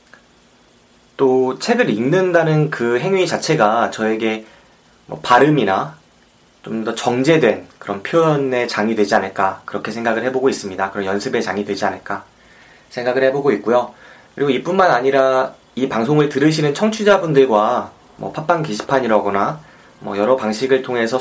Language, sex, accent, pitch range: Korean, male, native, 110-155 Hz